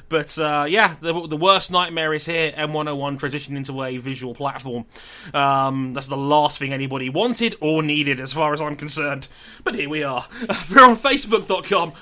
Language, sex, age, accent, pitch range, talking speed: English, male, 20-39, British, 135-180 Hz, 180 wpm